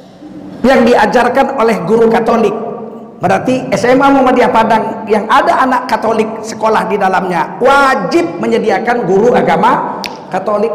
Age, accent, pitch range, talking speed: 50-69, native, 190-260 Hz, 115 wpm